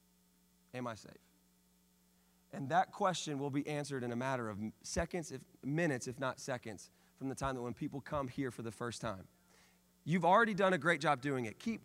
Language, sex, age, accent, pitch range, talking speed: English, male, 30-49, American, 115-165 Hz, 205 wpm